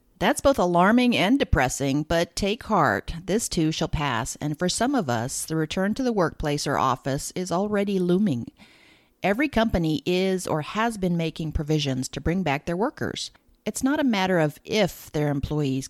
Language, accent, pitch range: English, American, 155-225 Hz